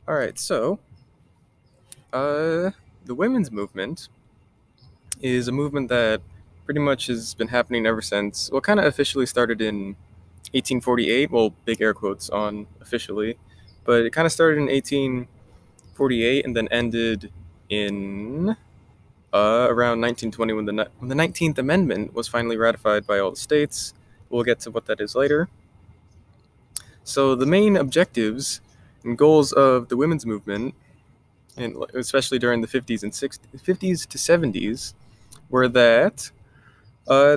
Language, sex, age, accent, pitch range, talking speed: English, male, 20-39, American, 110-135 Hz, 140 wpm